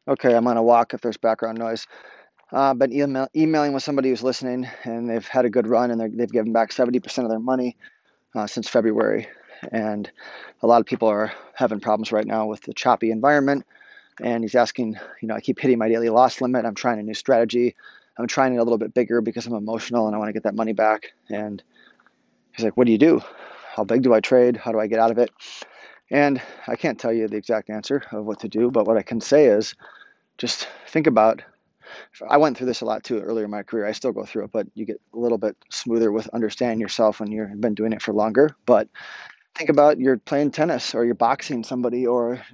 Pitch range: 110-125 Hz